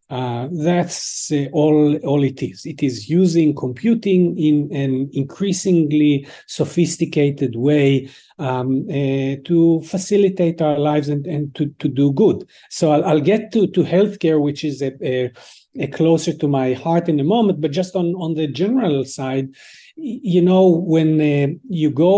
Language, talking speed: English, 165 wpm